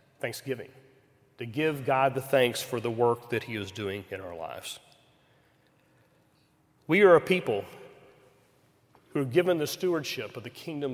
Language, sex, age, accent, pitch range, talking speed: English, male, 40-59, American, 125-145 Hz, 155 wpm